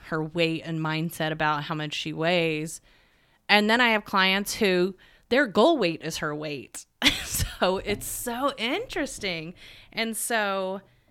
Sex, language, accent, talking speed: female, English, American, 145 wpm